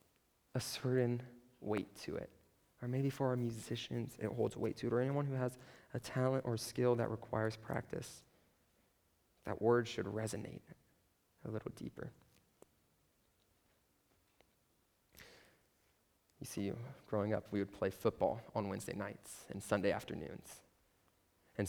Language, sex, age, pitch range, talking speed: English, male, 20-39, 100-130 Hz, 135 wpm